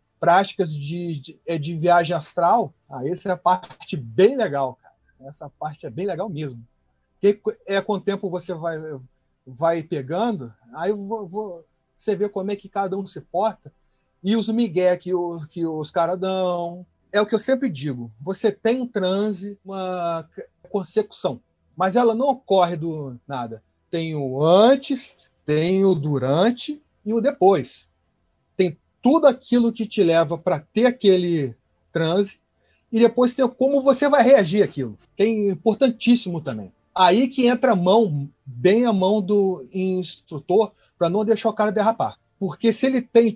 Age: 30-49